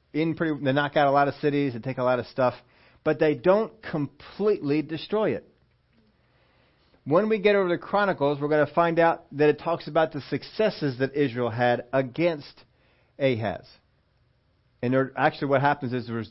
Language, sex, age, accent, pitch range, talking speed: English, male, 40-59, American, 120-145 Hz, 180 wpm